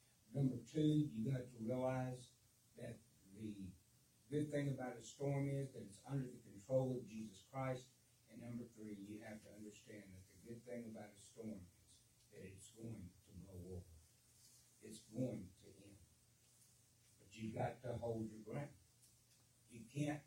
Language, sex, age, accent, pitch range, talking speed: English, male, 60-79, American, 105-130 Hz, 165 wpm